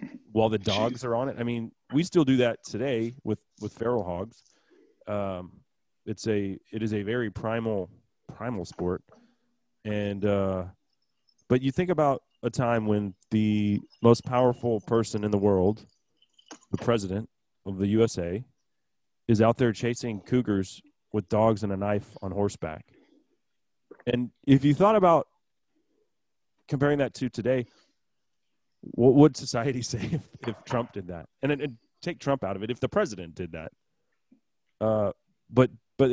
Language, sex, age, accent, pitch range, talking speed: English, male, 30-49, American, 100-125 Hz, 155 wpm